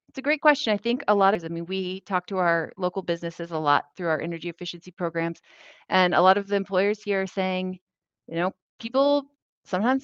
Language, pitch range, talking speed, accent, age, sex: English, 170-215 Hz, 220 wpm, American, 30-49, female